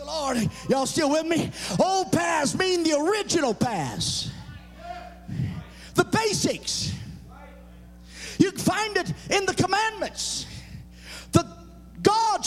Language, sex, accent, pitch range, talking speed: English, male, American, 255-355 Hz, 100 wpm